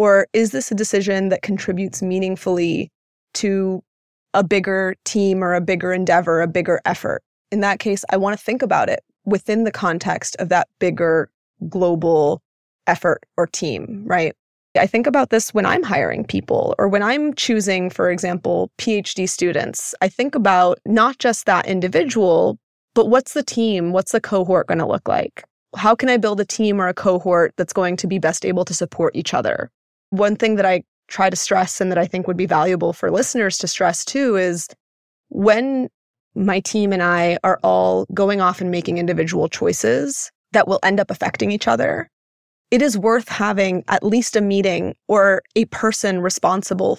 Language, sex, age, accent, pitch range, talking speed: English, female, 20-39, American, 180-210 Hz, 185 wpm